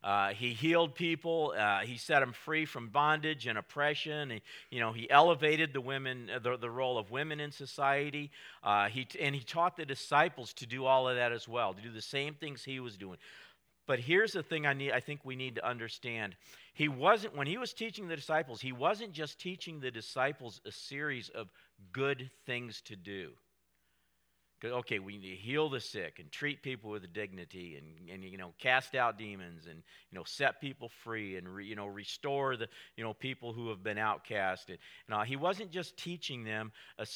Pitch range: 105-145 Hz